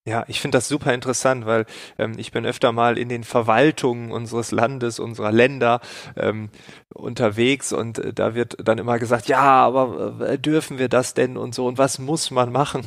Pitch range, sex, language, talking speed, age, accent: 110-130 Hz, male, German, 185 wpm, 30-49, German